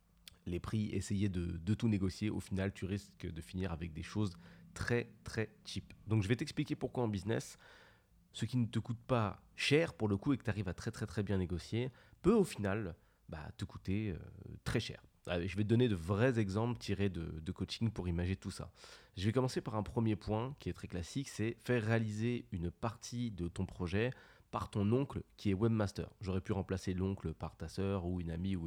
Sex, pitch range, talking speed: male, 90-115 Hz, 225 wpm